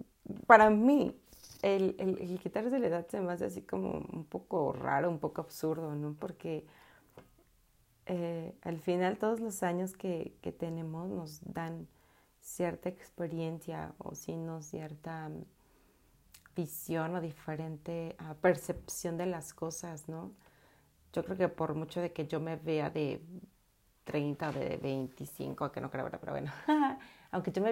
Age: 30-49